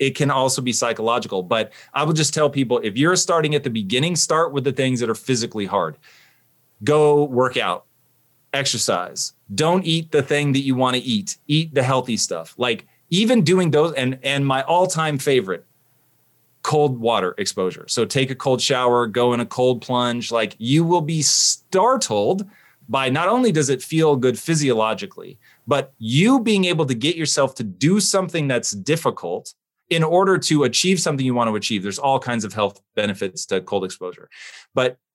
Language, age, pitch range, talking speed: English, 30-49, 120-155 Hz, 185 wpm